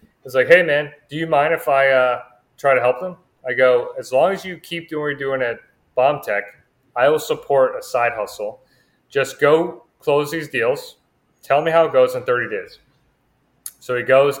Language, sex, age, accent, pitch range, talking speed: English, male, 30-49, American, 125-155 Hz, 205 wpm